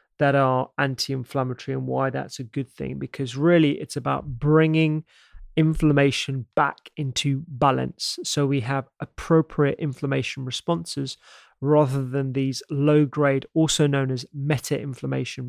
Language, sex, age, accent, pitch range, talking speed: English, male, 30-49, British, 135-155 Hz, 125 wpm